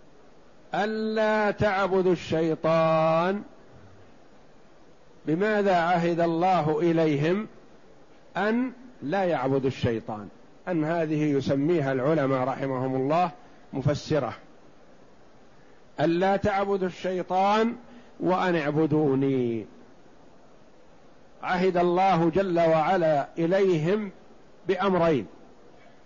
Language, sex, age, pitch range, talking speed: Arabic, male, 50-69, 155-200 Hz, 65 wpm